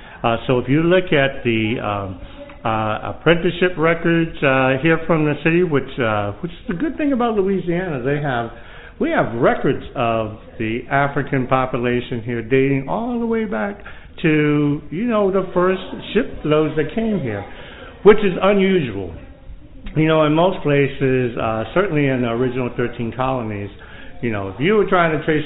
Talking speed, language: 170 wpm, English